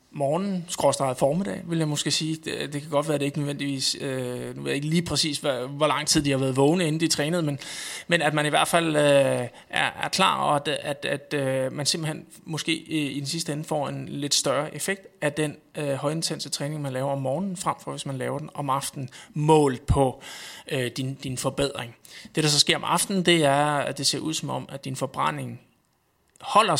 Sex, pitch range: male, 135-160 Hz